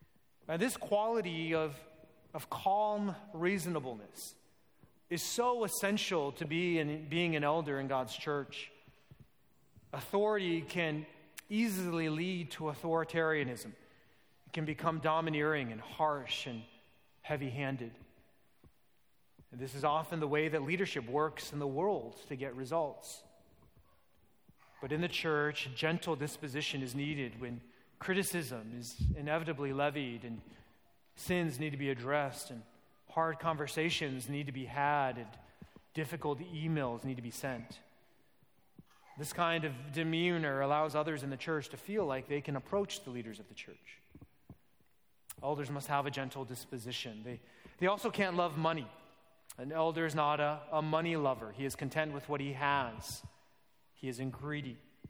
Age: 30-49